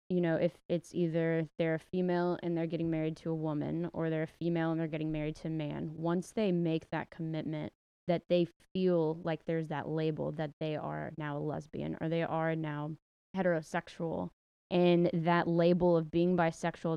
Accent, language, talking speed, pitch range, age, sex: American, English, 195 wpm, 155-170 Hz, 20-39, female